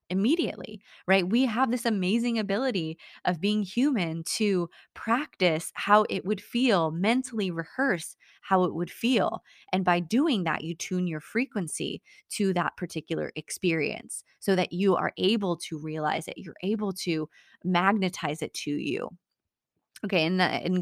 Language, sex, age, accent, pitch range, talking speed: English, female, 20-39, American, 175-220 Hz, 150 wpm